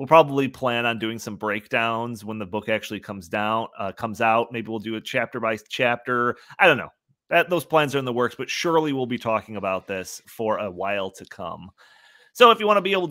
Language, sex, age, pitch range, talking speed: English, male, 30-49, 110-145 Hz, 240 wpm